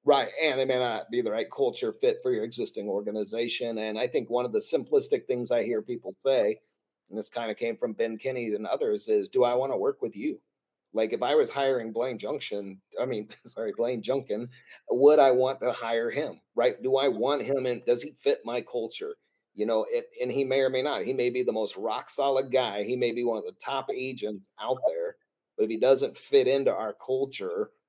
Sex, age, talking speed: male, 40-59, 230 wpm